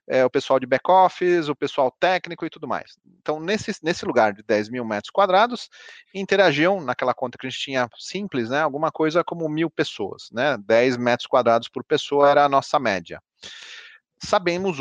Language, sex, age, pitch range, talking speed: Portuguese, male, 30-49, 140-185 Hz, 180 wpm